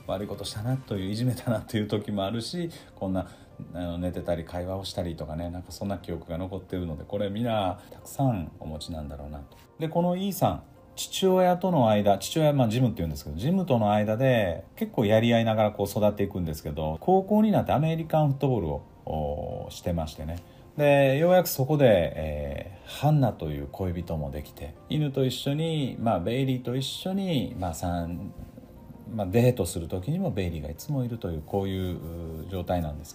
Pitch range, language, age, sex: 85-130 Hz, Japanese, 40-59, male